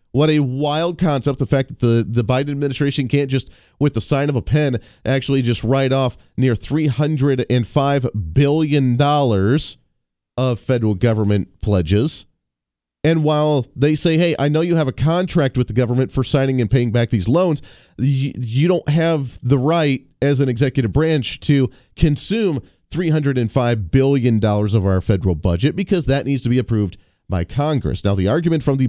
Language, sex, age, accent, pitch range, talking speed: English, male, 40-59, American, 115-150 Hz, 170 wpm